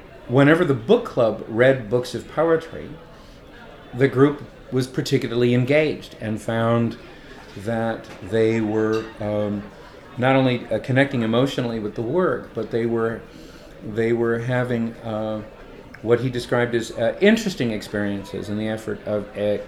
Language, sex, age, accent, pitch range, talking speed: English, male, 50-69, American, 110-135 Hz, 140 wpm